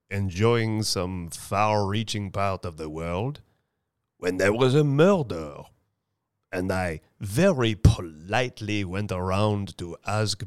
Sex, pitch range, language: male, 95-130 Hz, English